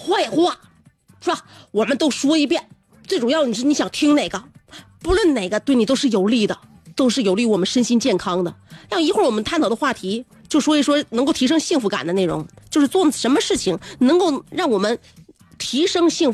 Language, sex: Chinese, female